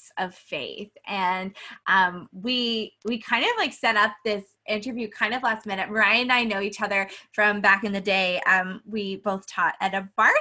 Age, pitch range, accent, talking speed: 20-39, 205-250 Hz, American, 200 wpm